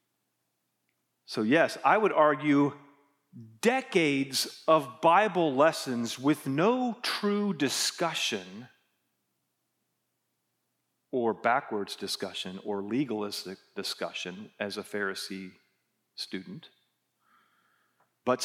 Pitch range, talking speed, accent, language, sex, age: 120-190 Hz, 80 wpm, American, English, male, 40-59